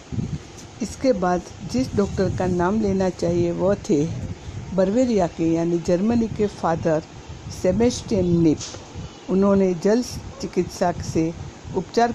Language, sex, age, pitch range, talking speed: Hindi, female, 60-79, 160-195 Hz, 115 wpm